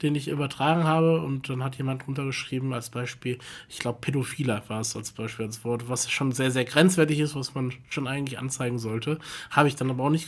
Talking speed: 220 wpm